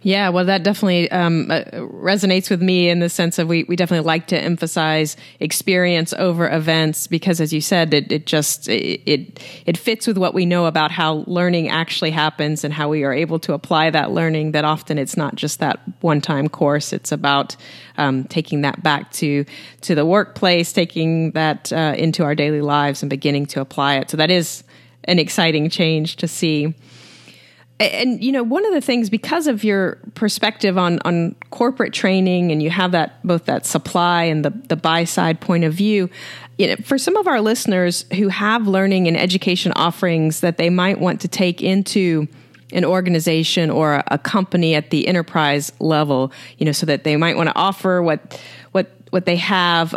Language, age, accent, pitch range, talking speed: English, 30-49, American, 155-185 Hz, 195 wpm